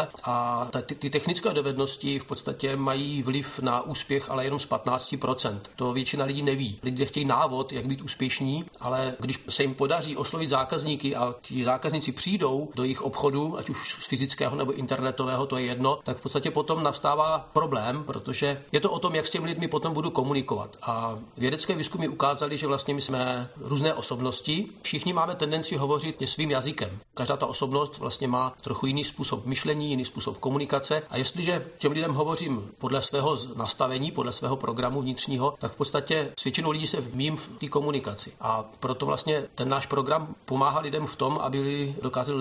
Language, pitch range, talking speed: Czech, 130-150 Hz, 185 wpm